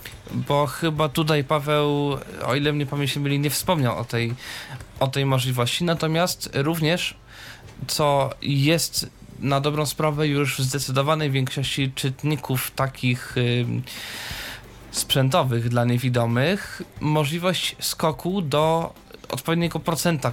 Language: Polish